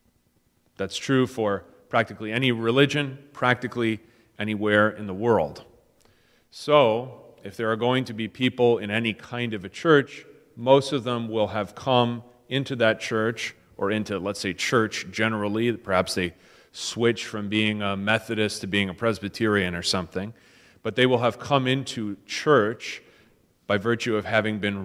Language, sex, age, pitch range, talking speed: English, male, 30-49, 105-120 Hz, 155 wpm